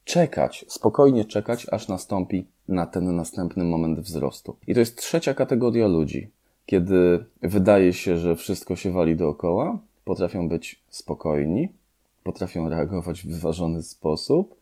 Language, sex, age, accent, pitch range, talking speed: Polish, male, 20-39, native, 75-100 Hz, 130 wpm